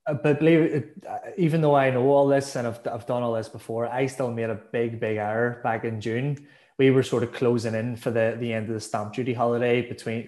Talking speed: 245 wpm